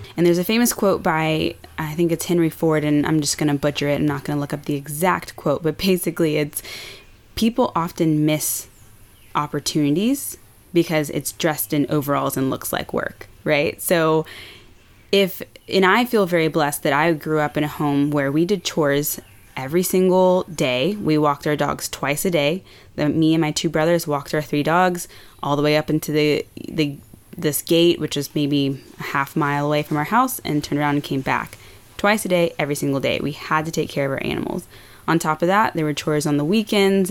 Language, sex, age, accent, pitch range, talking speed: English, female, 20-39, American, 140-170 Hz, 210 wpm